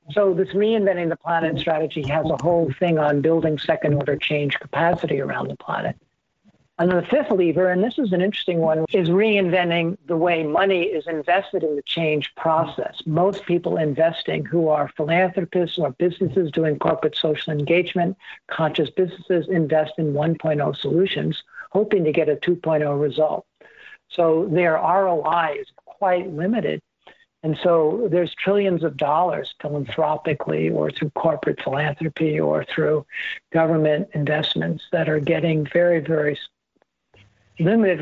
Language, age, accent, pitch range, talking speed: English, 60-79, American, 155-180 Hz, 140 wpm